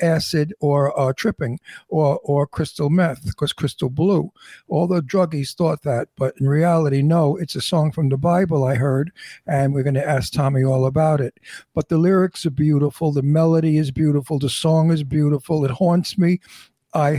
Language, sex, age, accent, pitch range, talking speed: English, male, 60-79, American, 135-160 Hz, 190 wpm